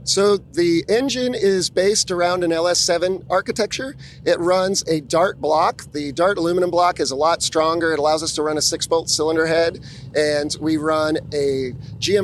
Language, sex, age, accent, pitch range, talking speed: English, male, 40-59, American, 150-175 Hz, 175 wpm